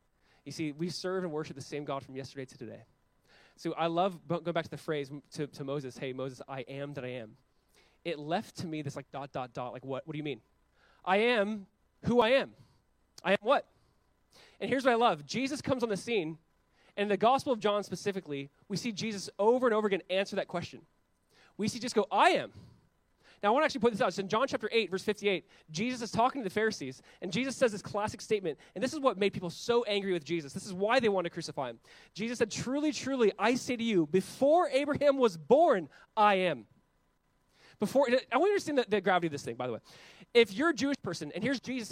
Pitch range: 160-235 Hz